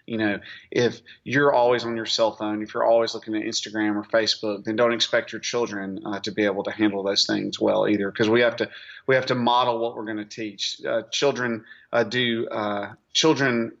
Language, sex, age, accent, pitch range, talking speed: English, male, 30-49, American, 105-120 Hz, 220 wpm